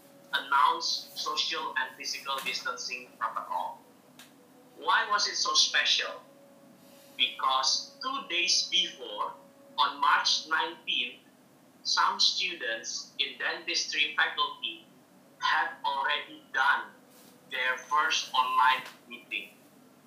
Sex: male